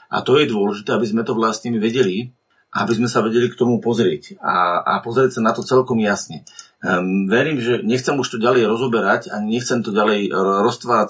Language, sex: Slovak, male